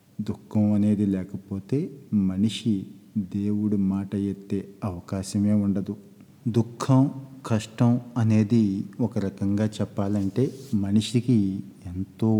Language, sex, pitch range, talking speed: Telugu, male, 100-115 Hz, 80 wpm